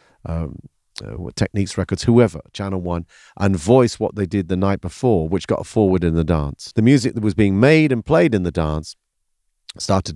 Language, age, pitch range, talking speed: English, 50-69, 90-105 Hz, 195 wpm